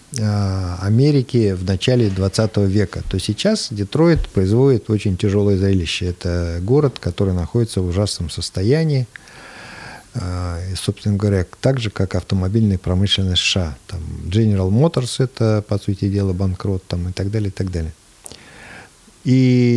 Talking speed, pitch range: 125 wpm, 95-115 Hz